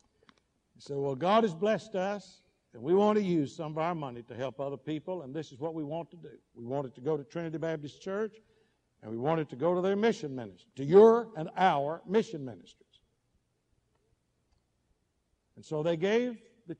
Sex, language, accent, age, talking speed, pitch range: male, English, American, 60-79, 205 wpm, 135-200 Hz